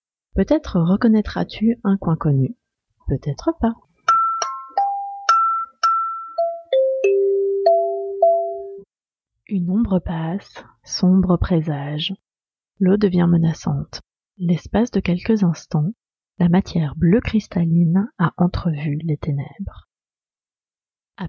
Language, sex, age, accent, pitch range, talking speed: French, female, 30-49, French, 160-230 Hz, 80 wpm